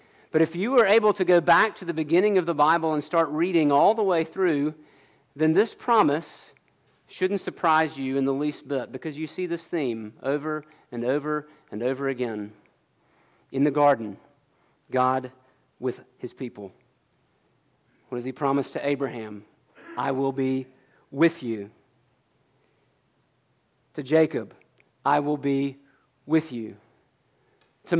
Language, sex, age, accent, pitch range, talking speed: English, male, 40-59, American, 130-170 Hz, 145 wpm